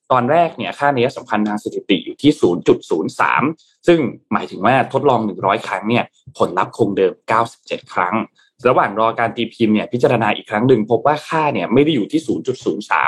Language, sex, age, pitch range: Thai, male, 20-39, 105-135 Hz